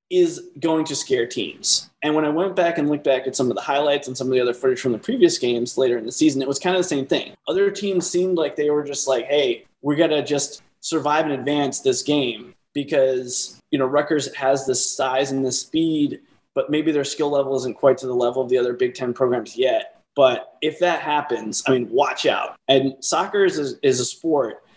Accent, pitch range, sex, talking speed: American, 130-165 Hz, male, 235 wpm